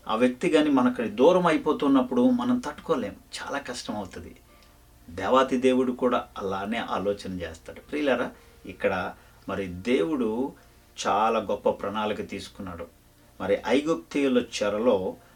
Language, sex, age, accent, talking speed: English, male, 50-69, Indian, 95 wpm